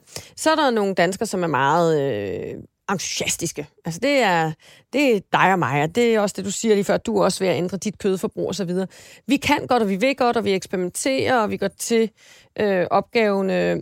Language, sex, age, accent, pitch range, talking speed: Danish, female, 30-49, native, 180-230 Hz, 225 wpm